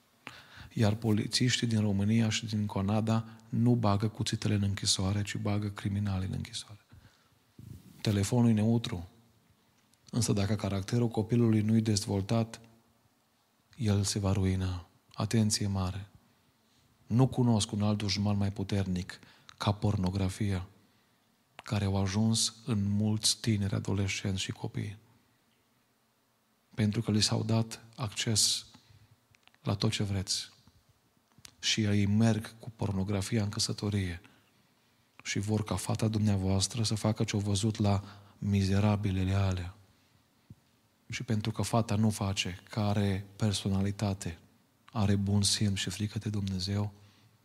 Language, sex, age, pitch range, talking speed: Romanian, male, 40-59, 100-115 Hz, 120 wpm